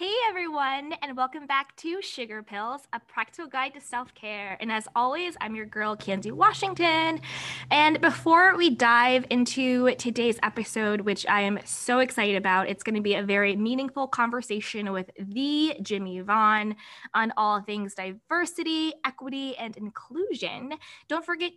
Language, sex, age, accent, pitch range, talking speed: English, female, 20-39, American, 215-295 Hz, 155 wpm